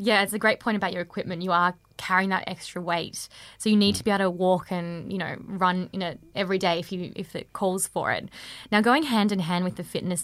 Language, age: English, 20-39